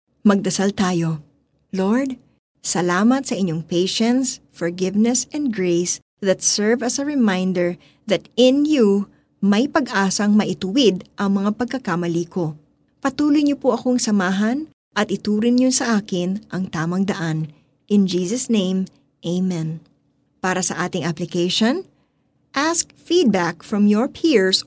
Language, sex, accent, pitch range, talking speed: Filipino, female, native, 180-245 Hz, 120 wpm